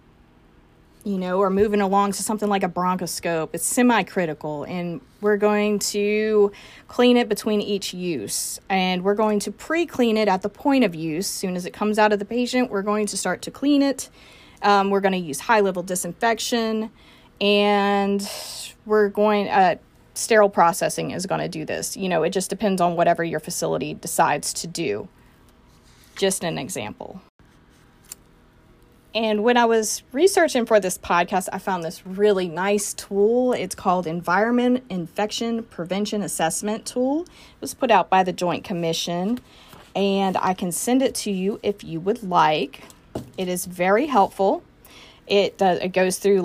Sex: female